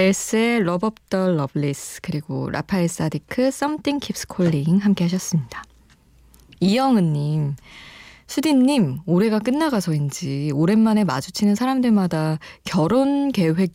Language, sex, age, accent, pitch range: Korean, female, 20-39, native, 155-215 Hz